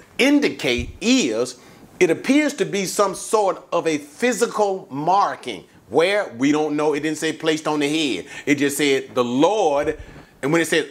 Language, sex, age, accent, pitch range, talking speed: English, male, 40-59, American, 150-220 Hz, 175 wpm